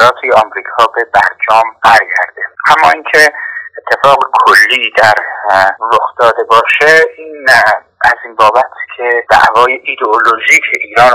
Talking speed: 110 wpm